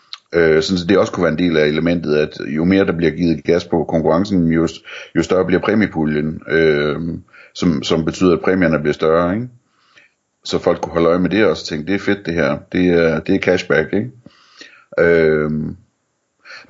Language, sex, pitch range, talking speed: Danish, male, 80-95 Hz, 195 wpm